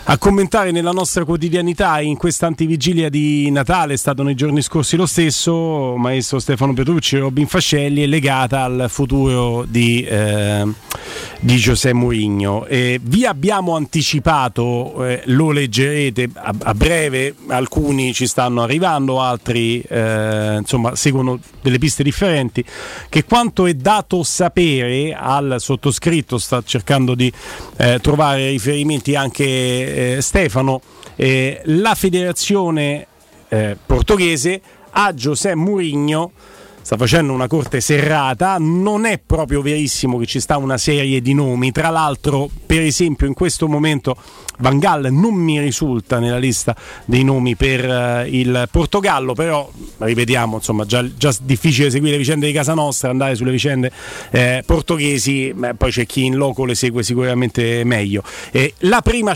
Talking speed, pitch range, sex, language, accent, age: 140 wpm, 125-160 Hz, male, Italian, native, 40-59